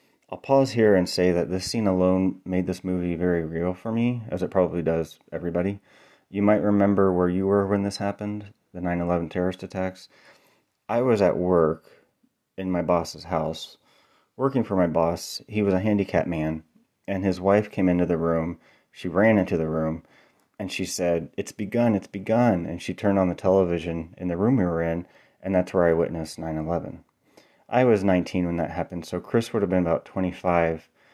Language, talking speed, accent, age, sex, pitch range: English, 195 wpm, American, 30-49, male, 85-100 Hz